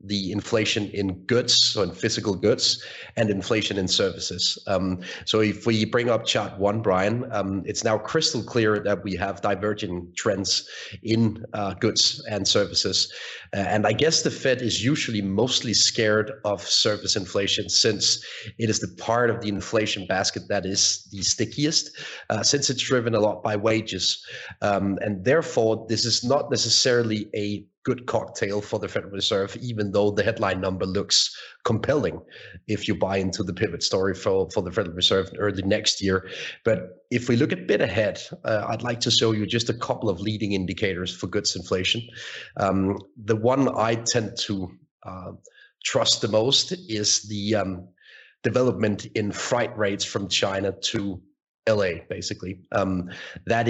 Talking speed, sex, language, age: 170 wpm, male, English, 30-49